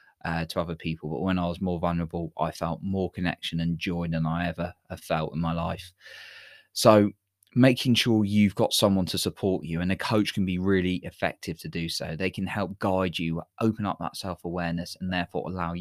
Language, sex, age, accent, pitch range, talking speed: English, male, 20-39, British, 85-105 Hz, 210 wpm